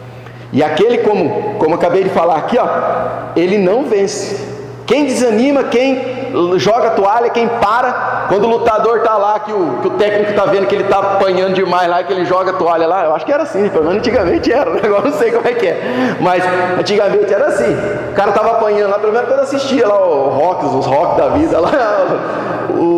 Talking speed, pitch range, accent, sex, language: 210 wpm, 180-250 Hz, Brazilian, male, Portuguese